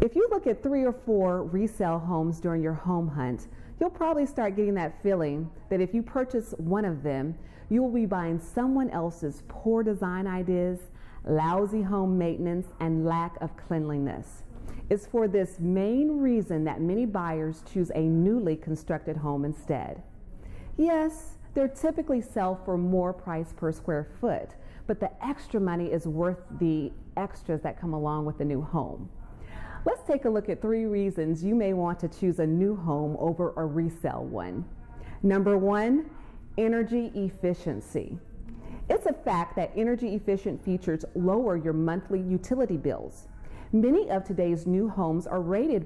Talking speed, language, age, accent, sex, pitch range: 160 wpm, English, 40-59, American, female, 160-210 Hz